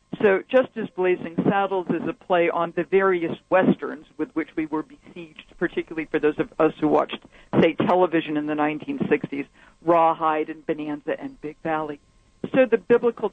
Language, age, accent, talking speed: English, 50-69, American, 170 wpm